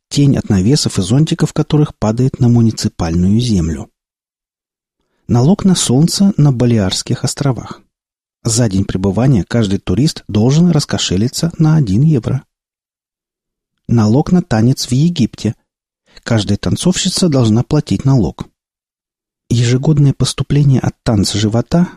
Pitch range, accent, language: 110-155 Hz, native, Russian